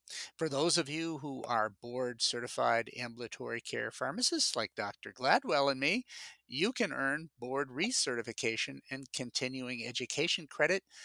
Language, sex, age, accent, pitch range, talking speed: English, male, 50-69, American, 125-165 Hz, 130 wpm